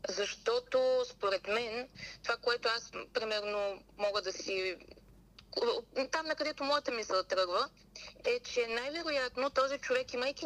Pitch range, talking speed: 215-295 Hz, 125 wpm